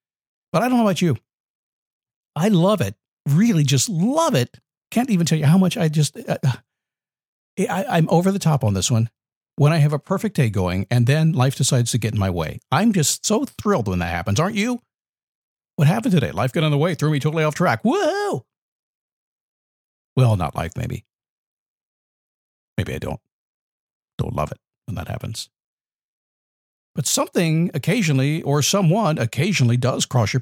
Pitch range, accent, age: 120-180 Hz, American, 50-69